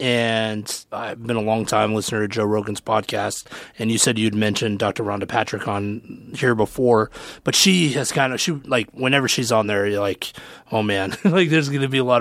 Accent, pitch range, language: American, 110-140 Hz, English